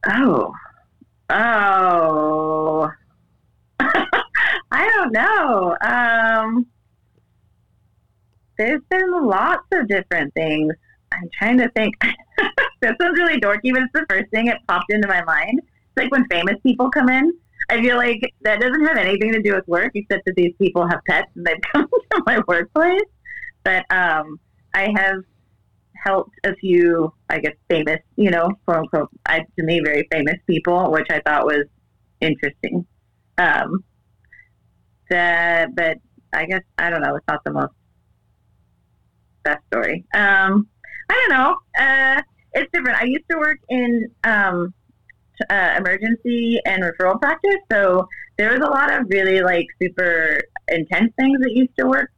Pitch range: 160-250 Hz